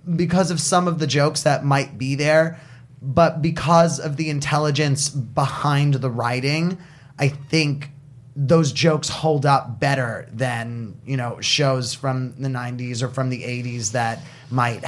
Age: 20-39